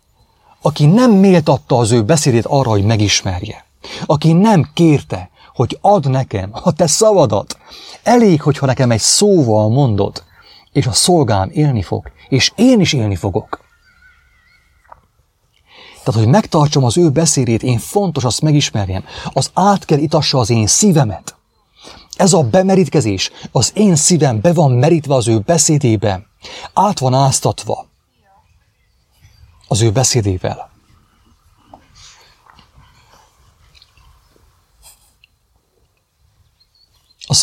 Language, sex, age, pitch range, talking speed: English, male, 30-49, 100-155 Hz, 110 wpm